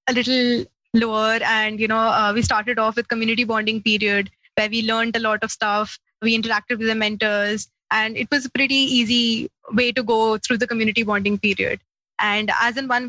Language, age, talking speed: English, 20-39, 200 wpm